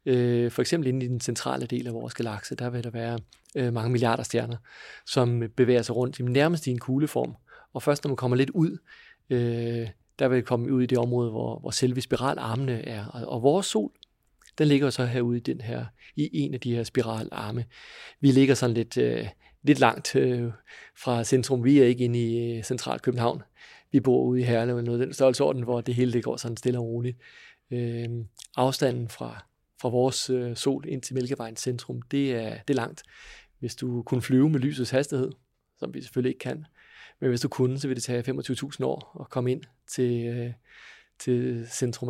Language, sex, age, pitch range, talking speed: Danish, male, 40-59, 120-130 Hz, 190 wpm